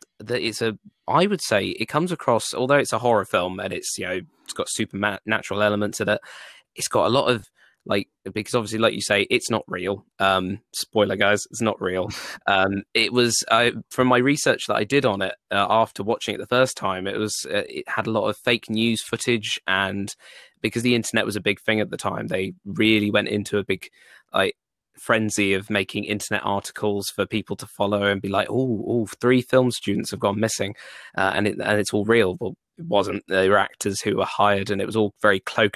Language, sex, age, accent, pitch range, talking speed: English, male, 20-39, British, 100-115 Hz, 230 wpm